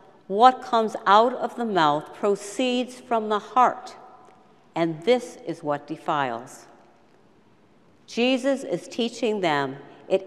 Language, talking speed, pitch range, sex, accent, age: English, 115 wpm, 170-225 Hz, female, American, 60-79